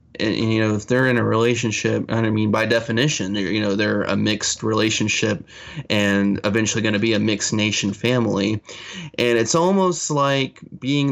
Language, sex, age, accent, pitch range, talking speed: English, male, 20-39, American, 105-125 Hz, 175 wpm